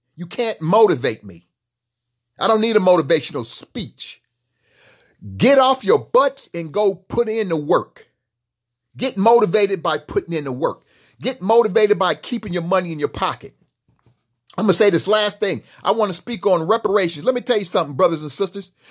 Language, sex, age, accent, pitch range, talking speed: English, male, 40-59, American, 155-220 Hz, 180 wpm